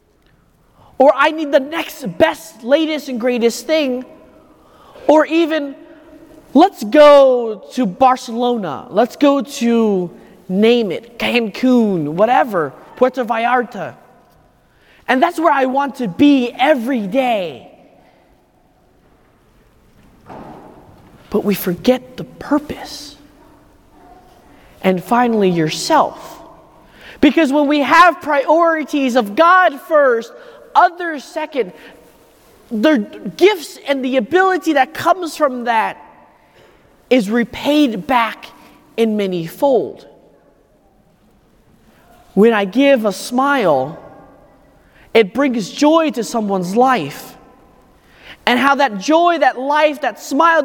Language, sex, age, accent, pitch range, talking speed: English, male, 30-49, American, 235-315 Hz, 100 wpm